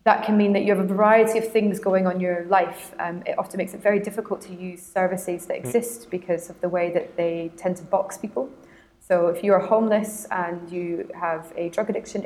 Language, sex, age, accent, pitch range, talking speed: English, female, 20-39, British, 175-205 Hz, 230 wpm